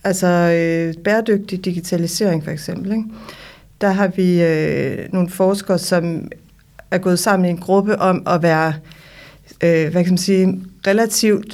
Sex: female